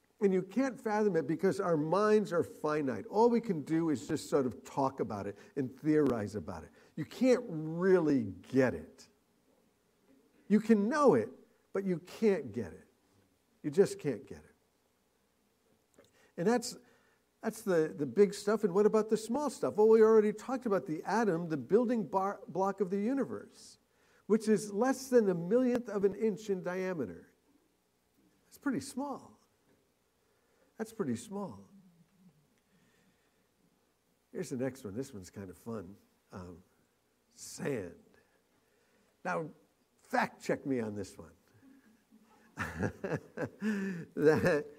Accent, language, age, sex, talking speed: American, English, 50-69, male, 145 wpm